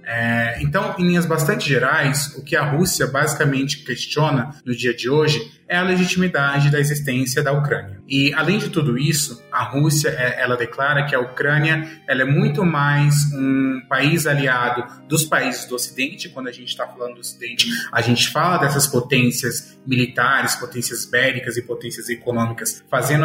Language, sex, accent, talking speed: Portuguese, male, Brazilian, 170 wpm